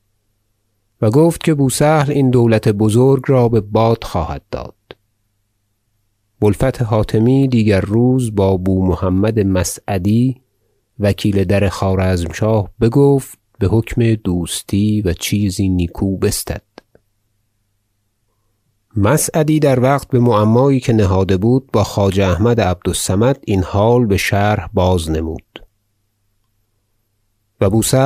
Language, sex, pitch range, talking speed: Persian, male, 100-120 Hz, 105 wpm